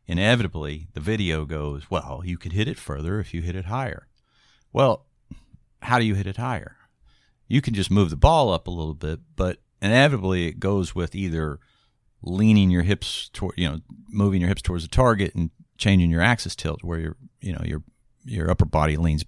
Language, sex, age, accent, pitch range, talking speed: English, male, 50-69, American, 80-115 Hz, 200 wpm